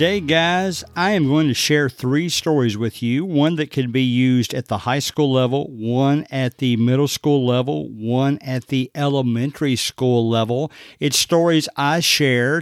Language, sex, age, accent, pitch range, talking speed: English, male, 50-69, American, 130-155 Hz, 175 wpm